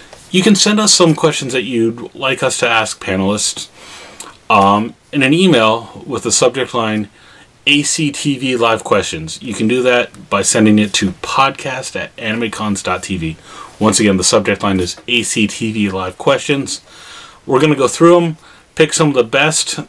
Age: 30-49